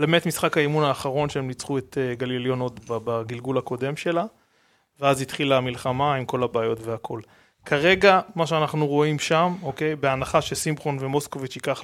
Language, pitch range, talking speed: Hebrew, 135-160 Hz, 145 wpm